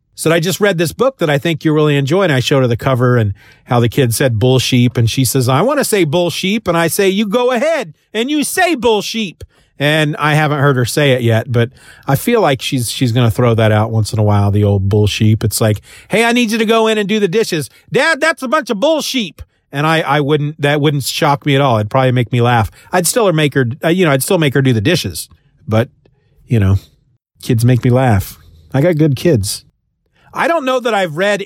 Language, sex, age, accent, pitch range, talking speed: English, male, 40-59, American, 130-180 Hz, 260 wpm